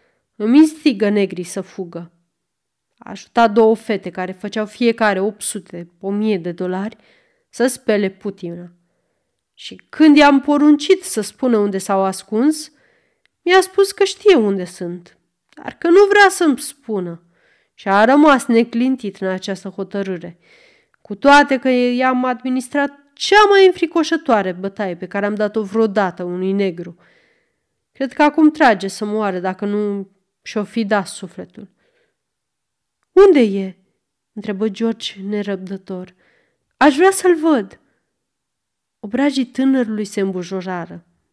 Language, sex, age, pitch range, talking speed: Romanian, female, 30-49, 195-280 Hz, 125 wpm